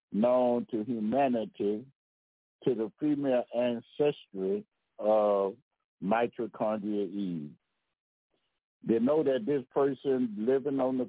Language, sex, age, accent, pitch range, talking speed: English, male, 60-79, American, 110-140 Hz, 95 wpm